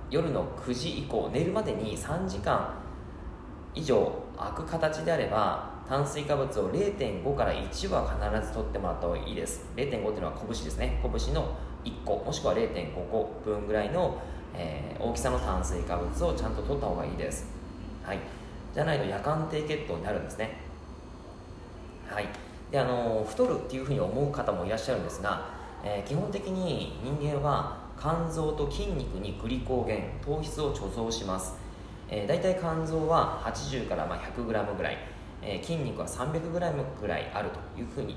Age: 20-39